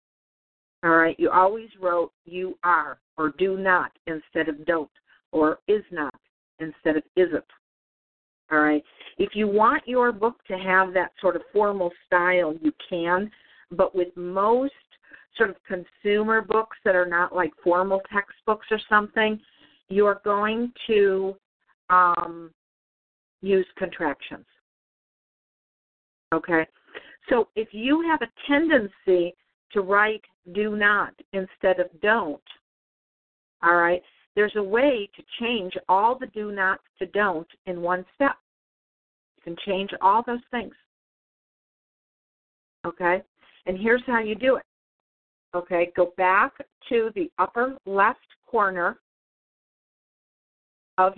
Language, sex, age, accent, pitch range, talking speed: English, female, 50-69, American, 175-220 Hz, 125 wpm